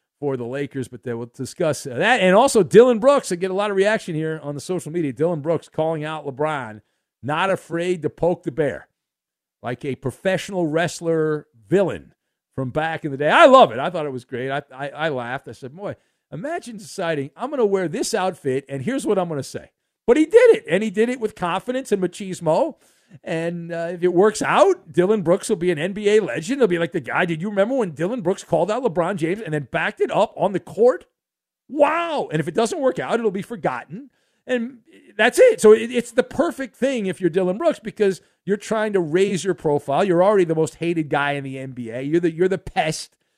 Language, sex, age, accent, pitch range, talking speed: English, male, 50-69, American, 155-220 Hz, 230 wpm